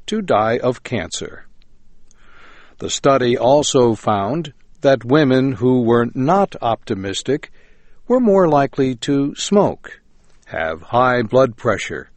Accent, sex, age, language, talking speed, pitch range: American, male, 60-79, English, 115 wpm, 115-170 Hz